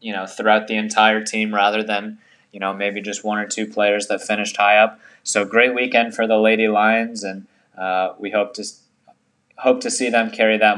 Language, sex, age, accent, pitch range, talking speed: English, male, 20-39, American, 105-115 Hz, 215 wpm